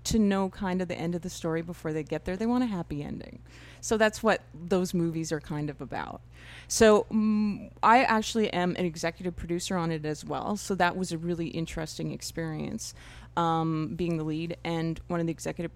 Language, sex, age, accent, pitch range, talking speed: English, female, 30-49, American, 160-195 Hz, 210 wpm